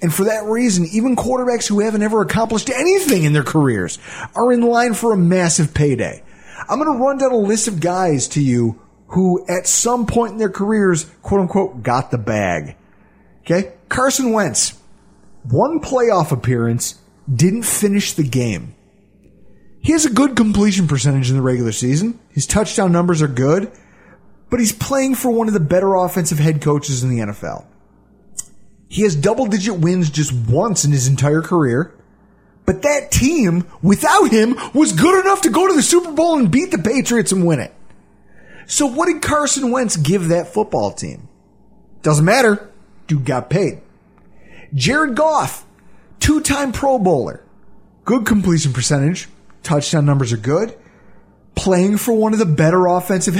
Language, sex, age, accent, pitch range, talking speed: English, male, 30-49, American, 155-240 Hz, 165 wpm